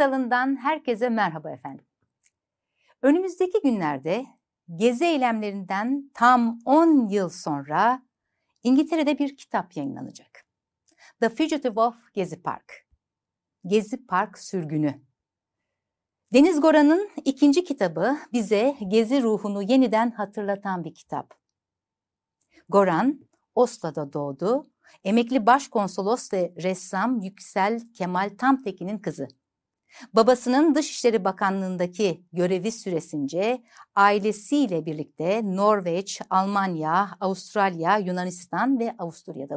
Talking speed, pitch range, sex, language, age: 90 wpm, 185-265 Hz, female, Turkish, 60-79